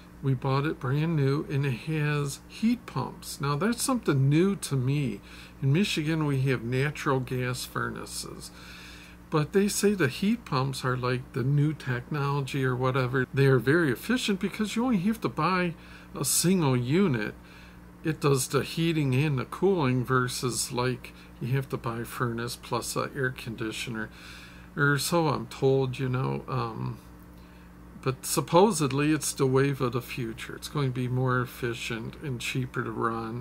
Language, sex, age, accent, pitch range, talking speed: English, male, 50-69, American, 120-155 Hz, 165 wpm